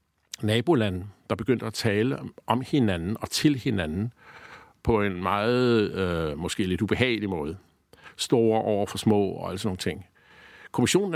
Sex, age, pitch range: male, 50-69, 105-125 Hz